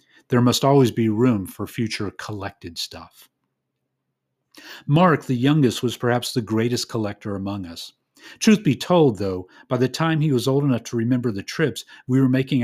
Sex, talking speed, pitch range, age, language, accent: male, 175 wpm, 105-130 Hz, 40-59, English, American